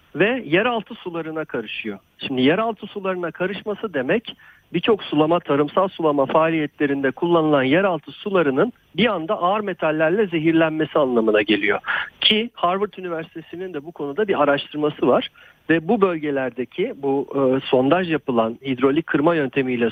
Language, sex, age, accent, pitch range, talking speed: Turkish, male, 50-69, native, 140-190 Hz, 130 wpm